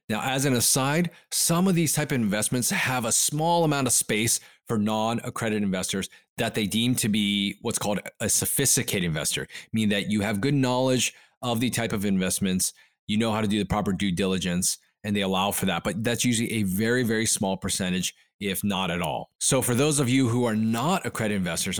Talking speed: 210 wpm